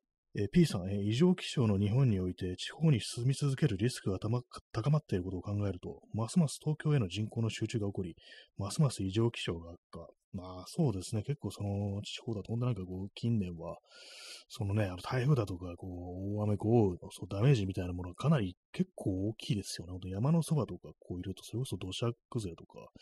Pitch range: 95-125 Hz